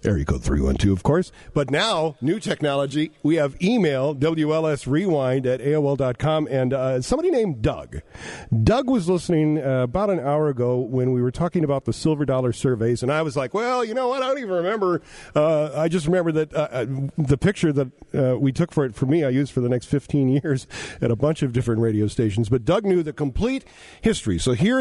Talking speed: 215 wpm